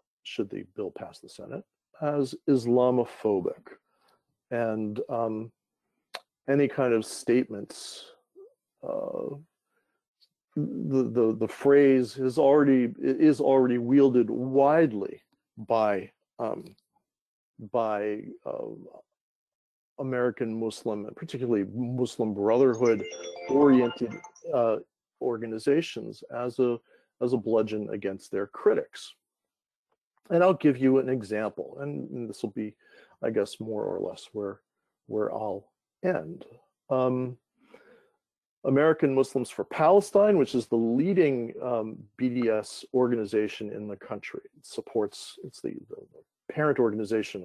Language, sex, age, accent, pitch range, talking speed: English, male, 50-69, American, 110-140 Hz, 110 wpm